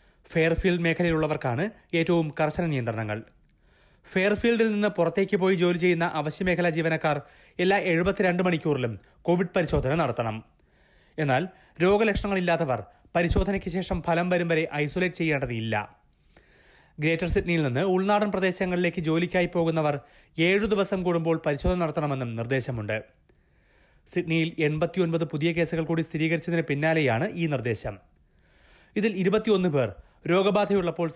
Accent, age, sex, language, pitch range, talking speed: native, 30-49, male, Malayalam, 135-185 Hz, 105 wpm